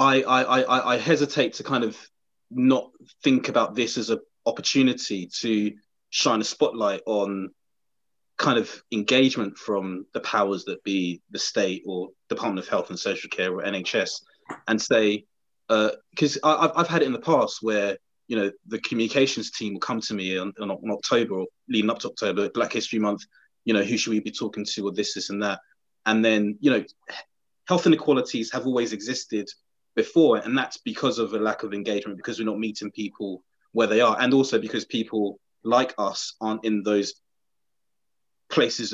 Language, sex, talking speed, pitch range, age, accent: English, male, 180 wpm, 105-130 Hz, 20-39, British